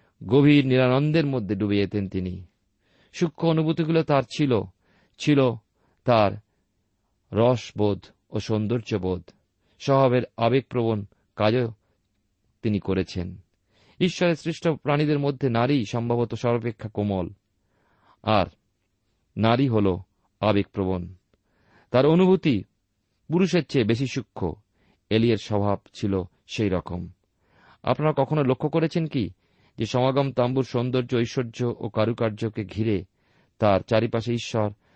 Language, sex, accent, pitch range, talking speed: Bengali, male, native, 100-130 Hz, 100 wpm